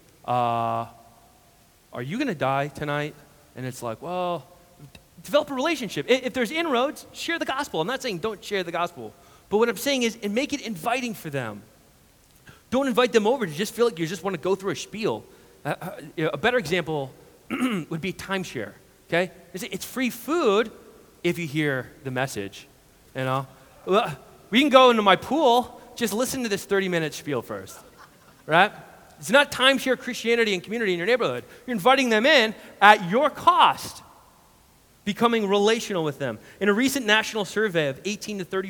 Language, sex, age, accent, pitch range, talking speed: English, male, 30-49, American, 165-245 Hz, 185 wpm